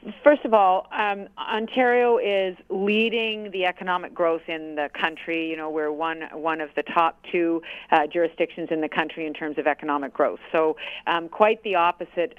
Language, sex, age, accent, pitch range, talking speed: English, female, 50-69, American, 160-205 Hz, 180 wpm